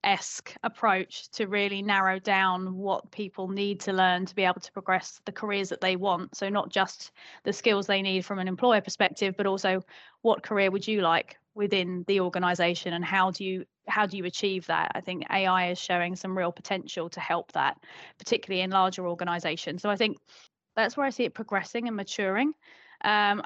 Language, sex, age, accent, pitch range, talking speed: English, female, 20-39, British, 185-215 Hz, 200 wpm